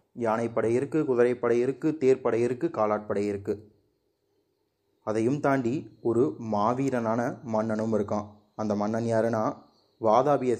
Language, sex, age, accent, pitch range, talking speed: Tamil, male, 30-49, native, 105-135 Hz, 110 wpm